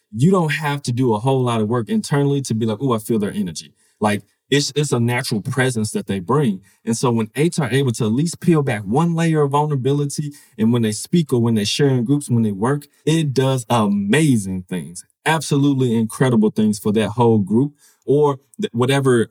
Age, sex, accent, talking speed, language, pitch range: 20-39, male, American, 210 wpm, English, 110-150 Hz